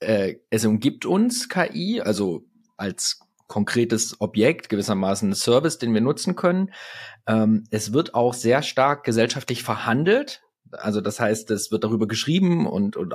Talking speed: 145 wpm